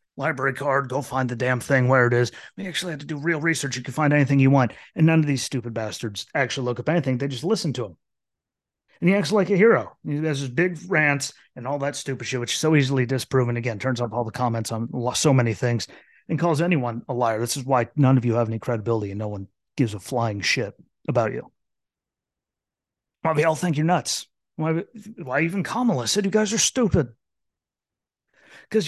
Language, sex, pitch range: English, male, 120-165 Hz